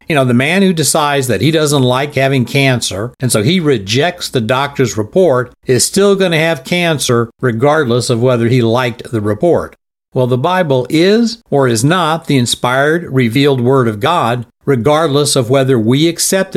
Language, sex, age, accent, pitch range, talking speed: English, male, 60-79, American, 115-155 Hz, 180 wpm